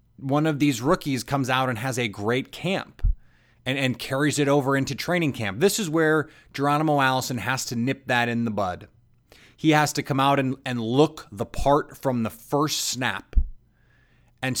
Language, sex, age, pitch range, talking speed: English, male, 30-49, 120-145 Hz, 190 wpm